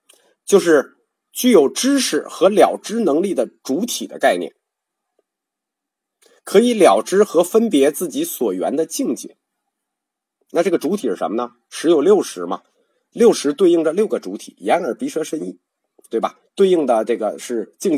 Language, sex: Chinese, male